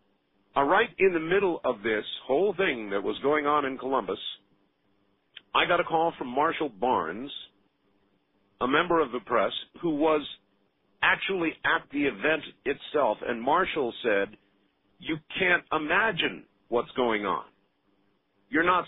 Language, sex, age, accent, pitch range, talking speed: English, male, 50-69, American, 100-160 Hz, 145 wpm